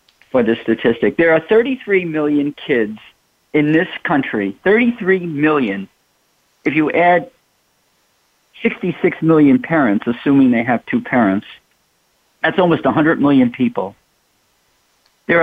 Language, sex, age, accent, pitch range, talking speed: English, male, 50-69, American, 125-185 Hz, 115 wpm